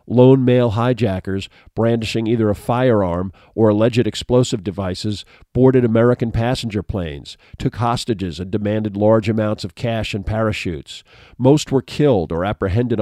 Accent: American